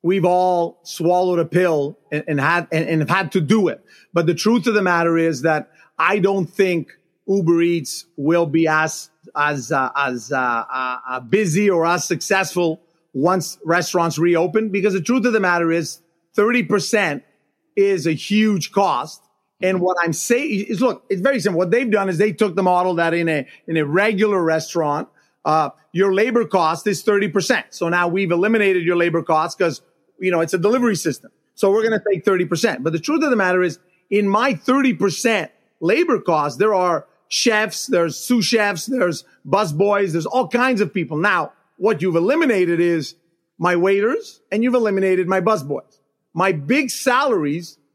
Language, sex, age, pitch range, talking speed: English, male, 30-49, 170-210 Hz, 180 wpm